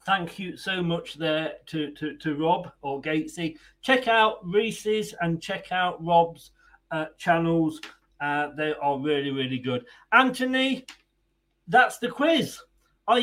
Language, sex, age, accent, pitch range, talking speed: English, male, 40-59, British, 155-225 Hz, 140 wpm